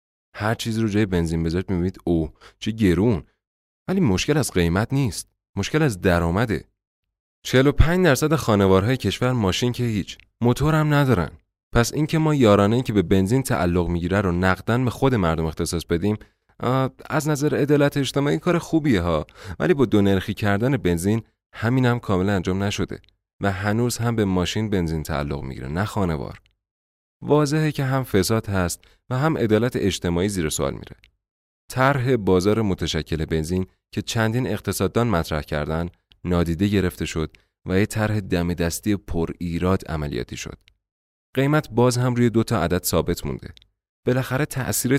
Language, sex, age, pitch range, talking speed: Persian, male, 30-49, 85-120 Hz, 155 wpm